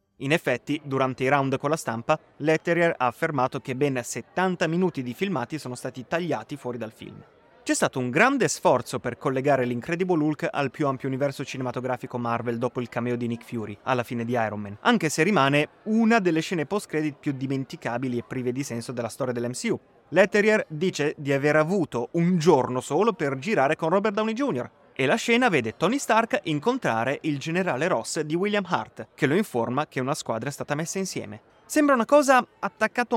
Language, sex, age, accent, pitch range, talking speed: Italian, male, 30-49, native, 130-190 Hz, 190 wpm